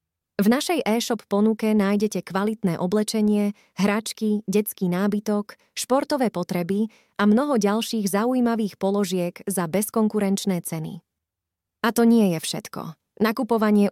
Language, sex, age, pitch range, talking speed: Slovak, female, 20-39, 180-220 Hz, 110 wpm